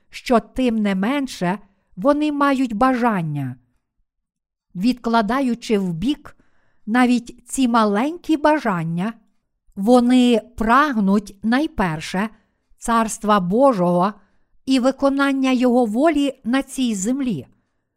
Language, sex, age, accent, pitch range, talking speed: Ukrainian, female, 50-69, native, 205-255 Hz, 85 wpm